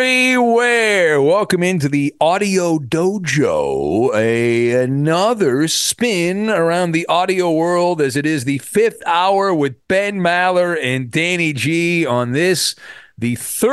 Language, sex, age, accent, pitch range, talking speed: English, male, 40-59, American, 130-205 Hz, 120 wpm